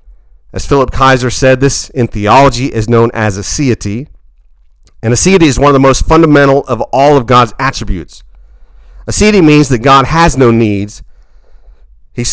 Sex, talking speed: male, 155 wpm